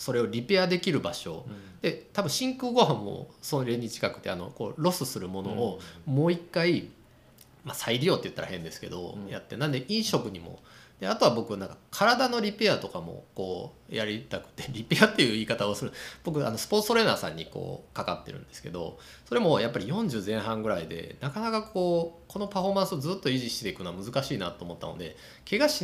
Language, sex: Japanese, male